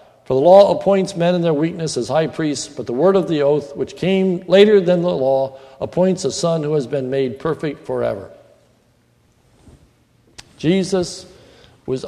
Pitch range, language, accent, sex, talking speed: 130-185 Hz, English, American, male, 170 wpm